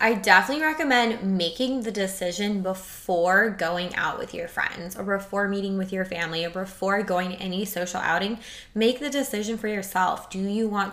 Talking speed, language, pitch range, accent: 180 wpm, English, 180-225 Hz, American